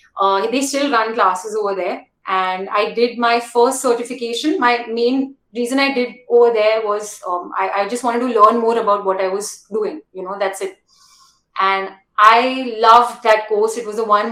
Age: 30-49